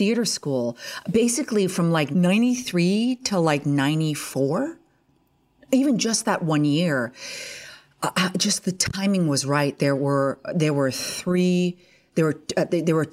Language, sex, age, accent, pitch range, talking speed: English, female, 40-59, American, 155-215 Hz, 135 wpm